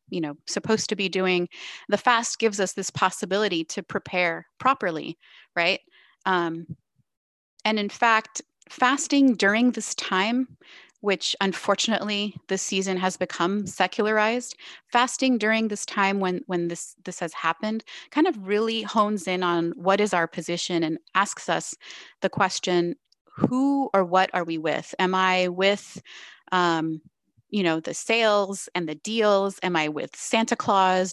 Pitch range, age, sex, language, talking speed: 175-215 Hz, 30-49, female, English, 150 wpm